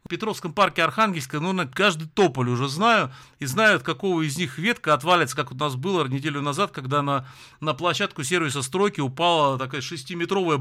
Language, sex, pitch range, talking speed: Russian, male, 130-195 Hz, 175 wpm